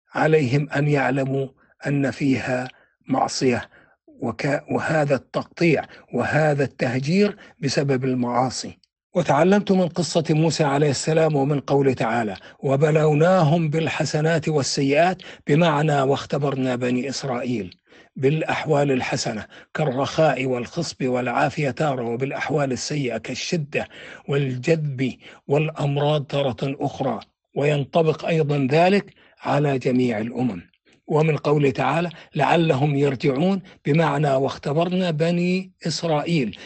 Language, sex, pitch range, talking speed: Arabic, male, 135-165 Hz, 90 wpm